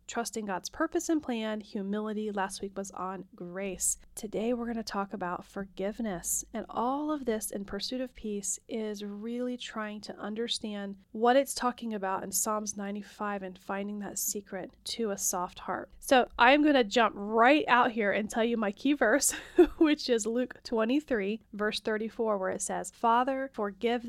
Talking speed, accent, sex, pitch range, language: 175 wpm, American, female, 195-235 Hz, English